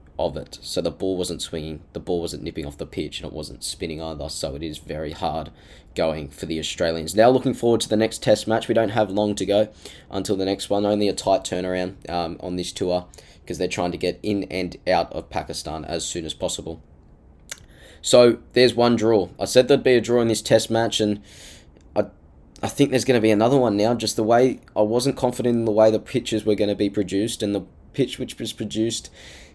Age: 10-29